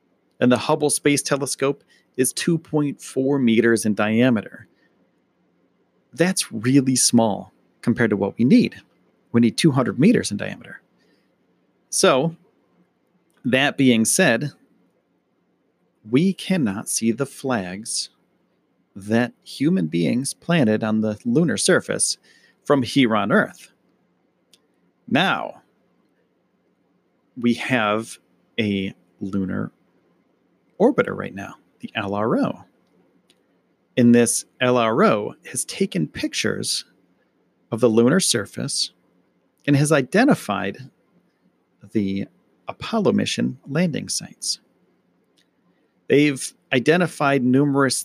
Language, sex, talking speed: English, male, 95 wpm